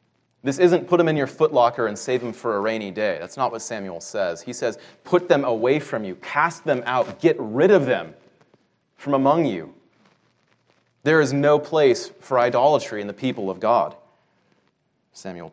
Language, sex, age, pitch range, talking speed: English, male, 30-49, 115-145 Hz, 185 wpm